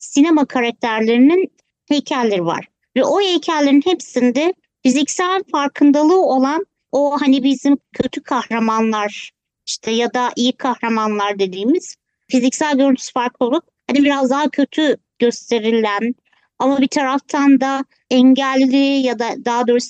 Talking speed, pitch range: 120 wpm, 245-305 Hz